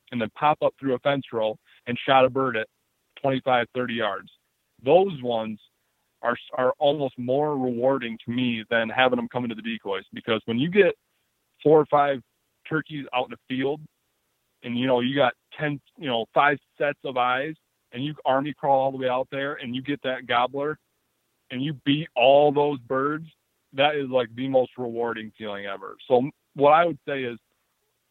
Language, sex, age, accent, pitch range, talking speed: English, male, 30-49, American, 120-145 Hz, 190 wpm